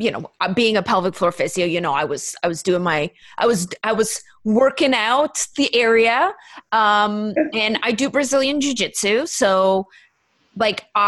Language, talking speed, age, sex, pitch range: English, 175 wpm, 30-49, female, 200-270 Hz